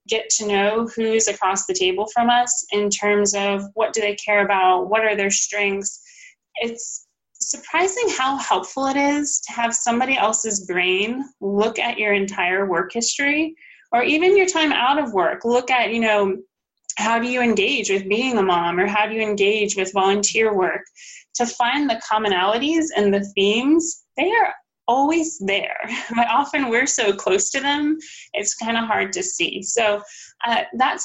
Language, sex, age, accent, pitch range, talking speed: English, female, 20-39, American, 205-260 Hz, 180 wpm